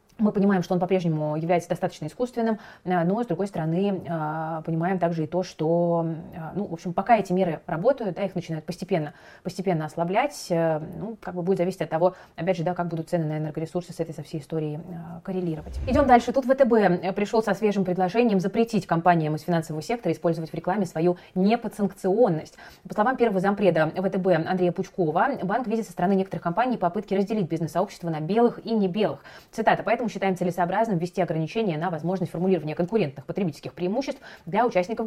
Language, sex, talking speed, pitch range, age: Russian, female, 180 wpm, 165-200 Hz, 20-39